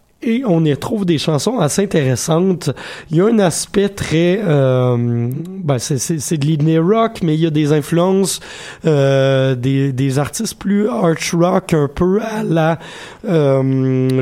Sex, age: male, 30-49